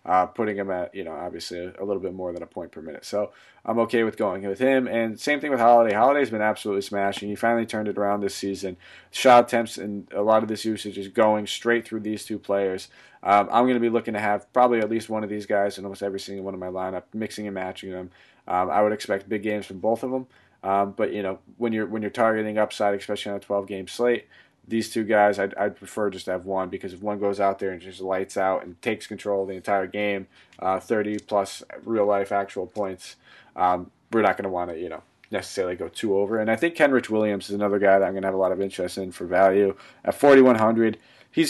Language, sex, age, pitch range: English, male, 20-39, 100-110 Hz